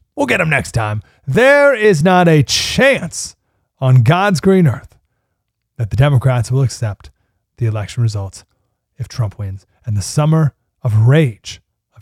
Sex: male